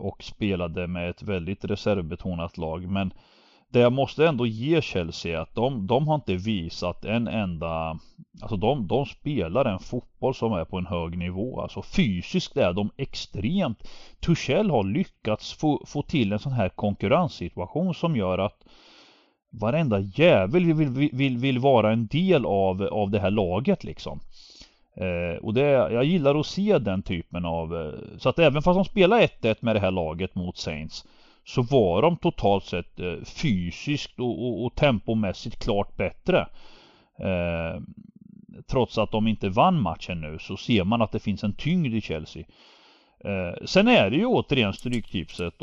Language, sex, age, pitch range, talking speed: Swedish, male, 30-49, 90-140 Hz, 170 wpm